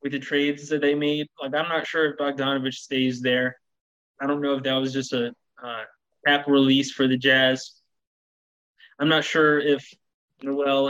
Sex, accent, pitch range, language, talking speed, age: male, American, 130-155 Hz, English, 180 wpm, 20-39